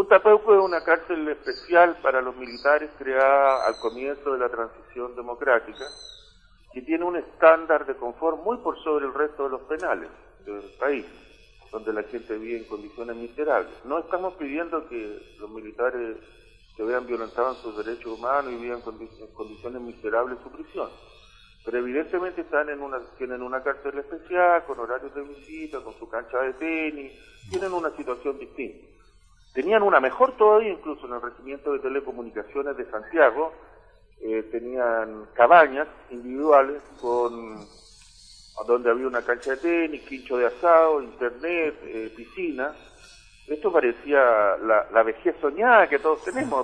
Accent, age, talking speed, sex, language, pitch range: Argentinian, 50-69, 150 wpm, male, Spanish, 120-165 Hz